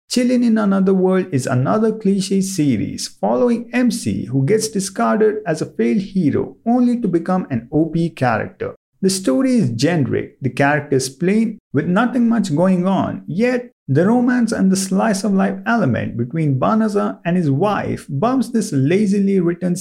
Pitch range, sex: 145-220 Hz, male